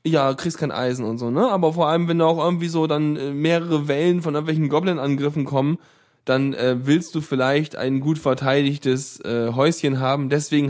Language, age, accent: German, 10-29, German